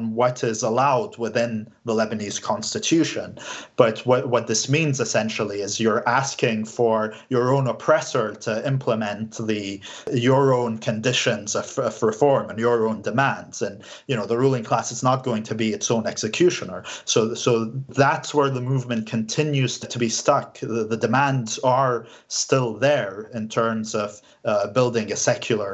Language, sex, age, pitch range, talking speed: English, male, 30-49, 115-140 Hz, 165 wpm